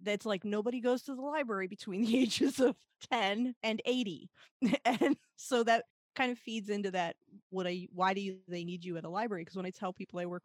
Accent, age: American, 30-49